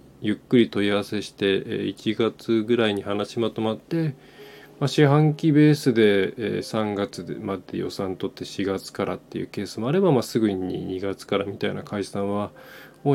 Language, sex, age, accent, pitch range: Japanese, male, 20-39, native, 100-125 Hz